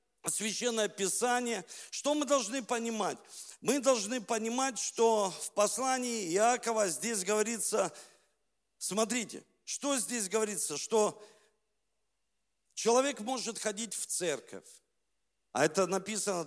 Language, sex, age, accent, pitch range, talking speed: Russian, male, 50-69, native, 180-235 Hz, 100 wpm